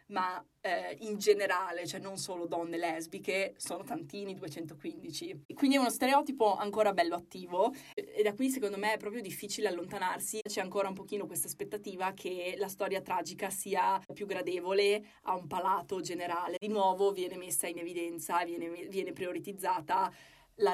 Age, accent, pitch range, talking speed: 20-39, native, 175-210 Hz, 160 wpm